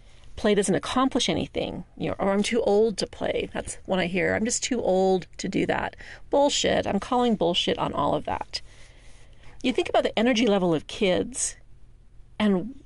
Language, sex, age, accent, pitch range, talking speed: English, female, 40-59, American, 175-230 Hz, 180 wpm